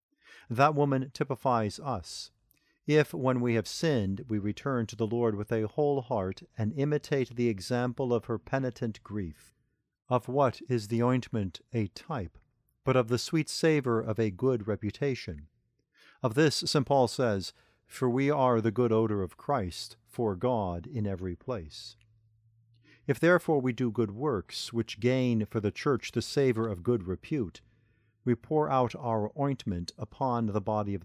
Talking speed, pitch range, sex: 165 wpm, 105-135 Hz, male